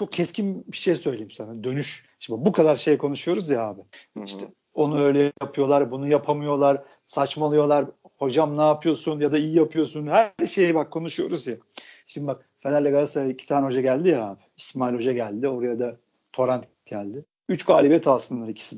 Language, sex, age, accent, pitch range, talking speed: Turkish, male, 50-69, native, 140-180 Hz, 170 wpm